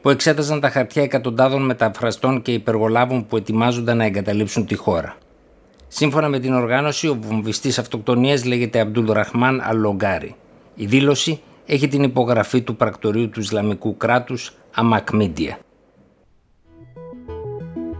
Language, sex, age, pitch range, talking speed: Greek, male, 60-79, 100-125 Hz, 115 wpm